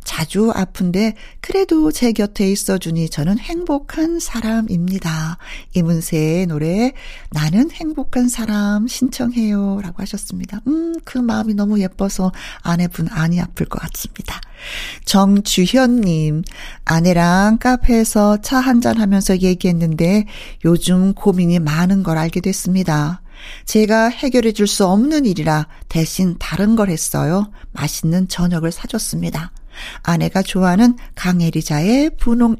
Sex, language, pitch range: female, Korean, 170-230 Hz